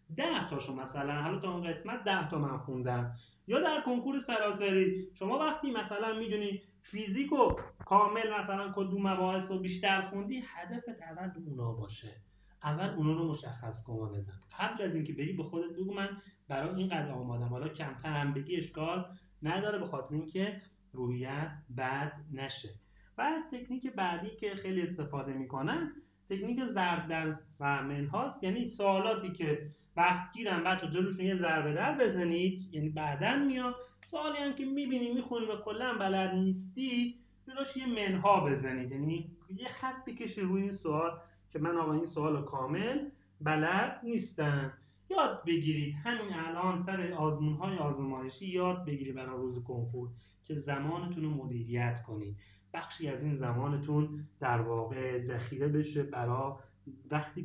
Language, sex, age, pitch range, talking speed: Persian, male, 30-49, 140-195 Hz, 145 wpm